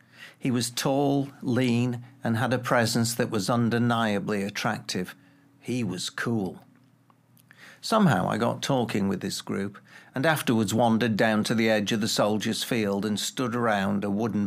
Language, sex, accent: English, male, British